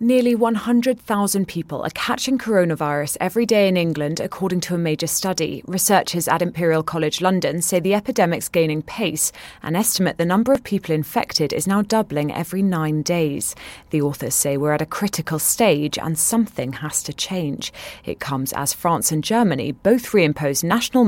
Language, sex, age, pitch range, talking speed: English, female, 20-39, 155-205 Hz, 170 wpm